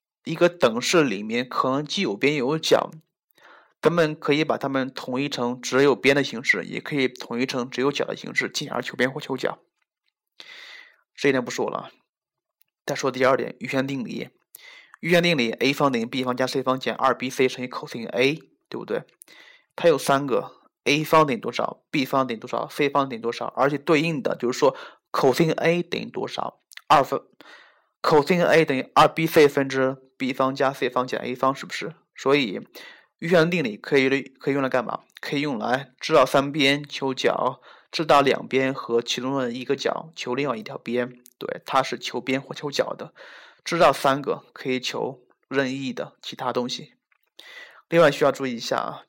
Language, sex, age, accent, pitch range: Chinese, male, 20-39, native, 130-165 Hz